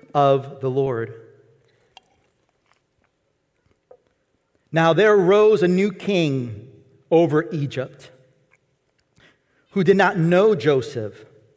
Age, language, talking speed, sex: 40-59, English, 85 wpm, male